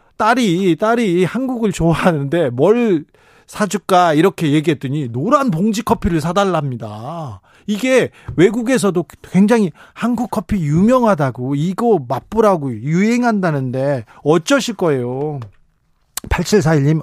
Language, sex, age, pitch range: Korean, male, 40-59, 145-200 Hz